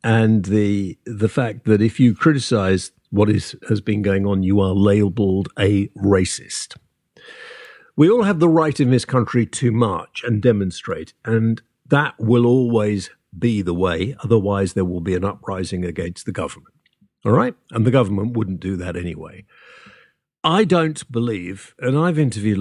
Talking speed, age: 165 wpm, 50-69